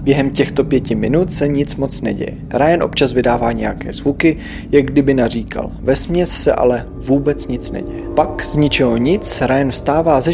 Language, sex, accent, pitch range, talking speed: Czech, male, native, 120-160 Hz, 170 wpm